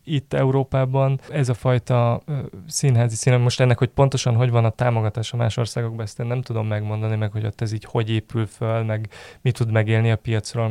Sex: male